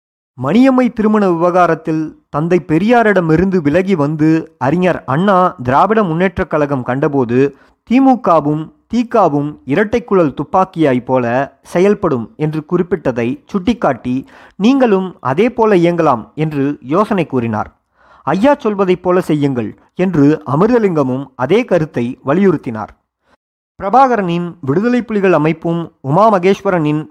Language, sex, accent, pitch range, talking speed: Tamil, male, native, 140-195 Hz, 90 wpm